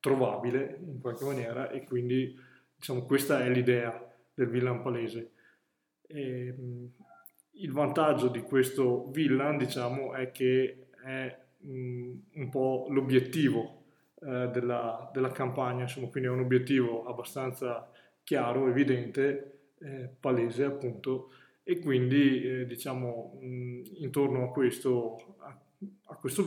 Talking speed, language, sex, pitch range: 115 wpm, Italian, male, 125-140 Hz